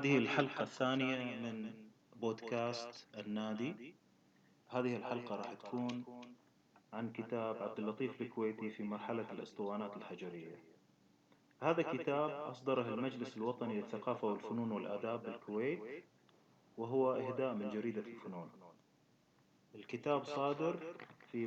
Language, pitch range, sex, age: Arabic, 110-130 Hz, male, 30-49